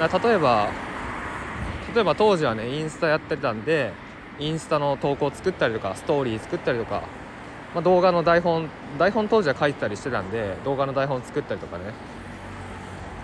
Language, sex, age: Japanese, male, 20-39